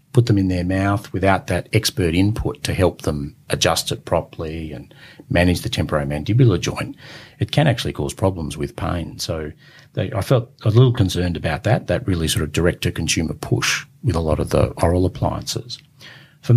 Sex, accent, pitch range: male, Australian, 85-125 Hz